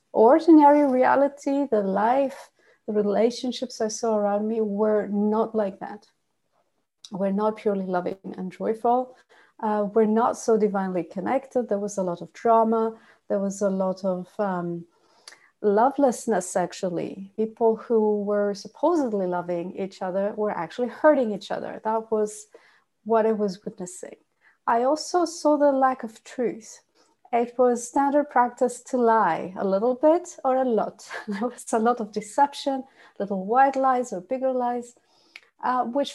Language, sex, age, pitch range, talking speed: English, female, 30-49, 205-250 Hz, 150 wpm